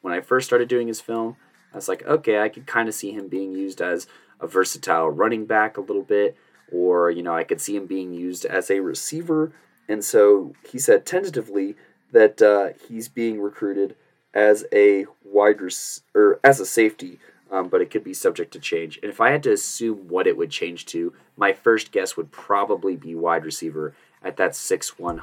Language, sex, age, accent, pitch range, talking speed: English, male, 20-39, American, 85-130 Hz, 210 wpm